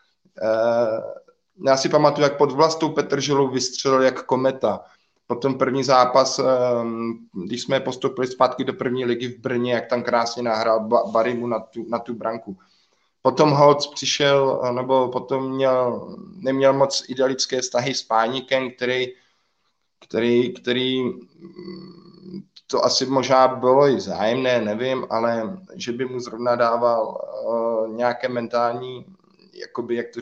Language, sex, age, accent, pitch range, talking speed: Czech, male, 20-39, native, 120-140 Hz, 130 wpm